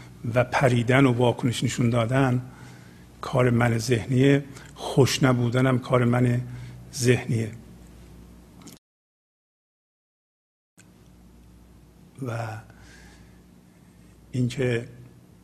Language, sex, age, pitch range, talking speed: Persian, male, 50-69, 115-135 Hz, 60 wpm